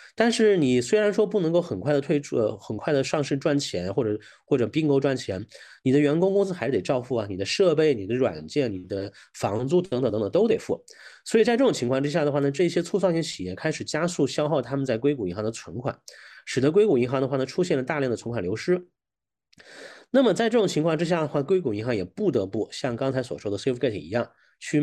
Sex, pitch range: male, 115-165 Hz